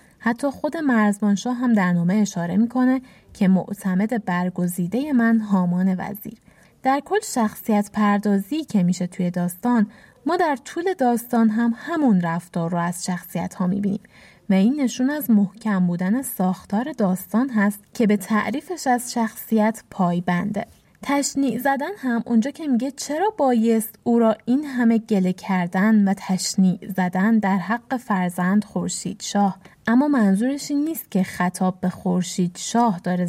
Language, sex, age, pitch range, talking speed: Persian, female, 20-39, 185-245 Hz, 145 wpm